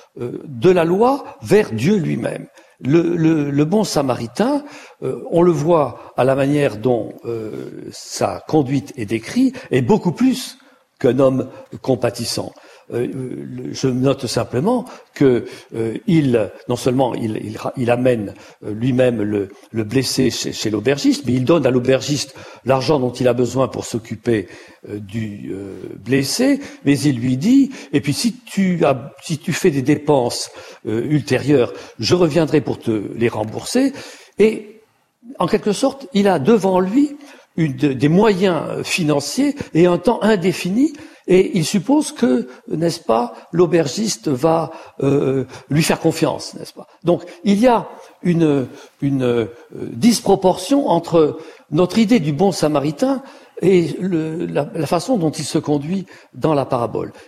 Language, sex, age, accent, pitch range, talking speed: French, male, 60-79, French, 130-205 Hz, 150 wpm